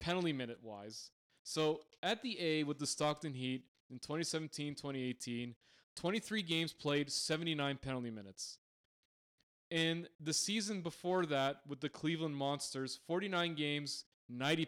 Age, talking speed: 20-39, 125 wpm